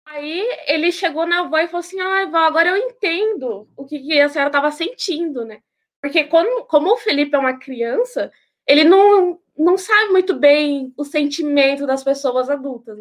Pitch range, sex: 265-335 Hz, female